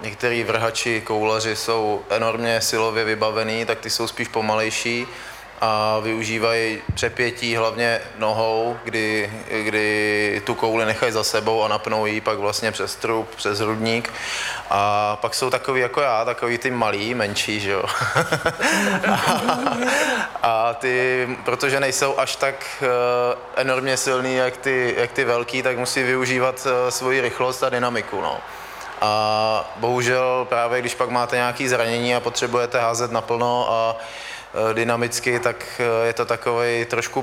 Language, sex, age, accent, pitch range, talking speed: Czech, male, 20-39, native, 110-125 Hz, 140 wpm